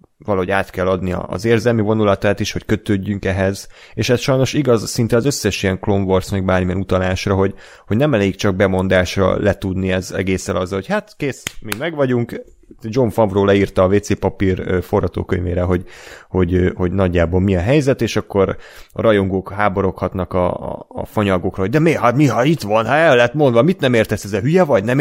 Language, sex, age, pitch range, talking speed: Hungarian, male, 30-49, 95-120 Hz, 195 wpm